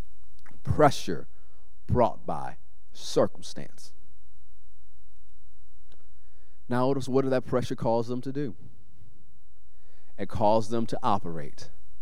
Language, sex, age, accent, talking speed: English, male, 40-59, American, 95 wpm